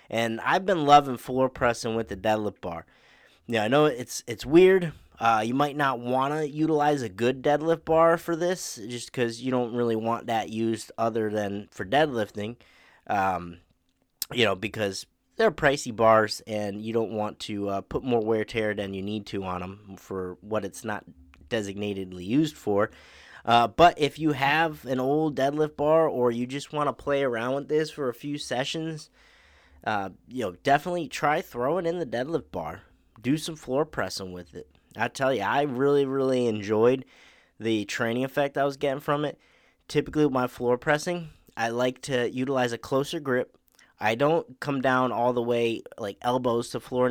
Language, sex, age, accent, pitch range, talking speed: English, male, 30-49, American, 110-145 Hz, 185 wpm